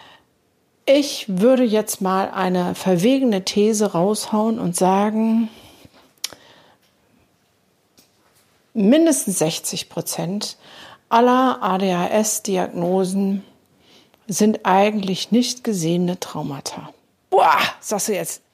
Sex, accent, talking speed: female, German, 75 wpm